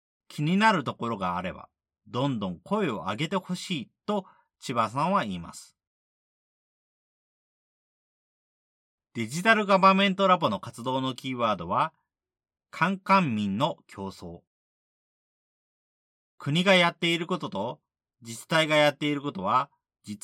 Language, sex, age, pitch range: Japanese, male, 40-59, 105-175 Hz